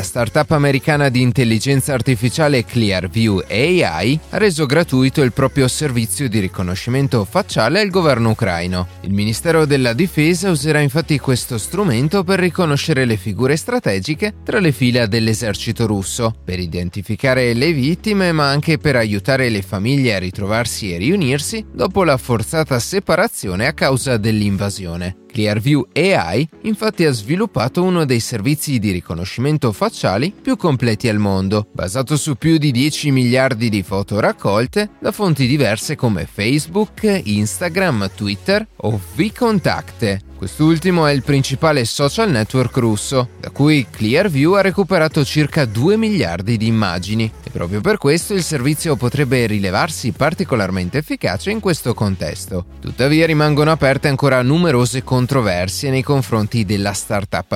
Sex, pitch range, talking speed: male, 105-155 Hz, 140 wpm